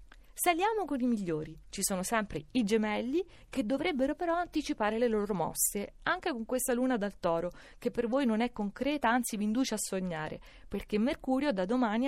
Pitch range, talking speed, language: 195-265 Hz, 185 wpm, Italian